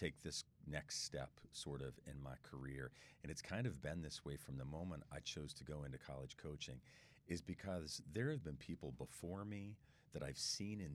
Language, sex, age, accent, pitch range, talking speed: English, male, 40-59, American, 65-90 Hz, 210 wpm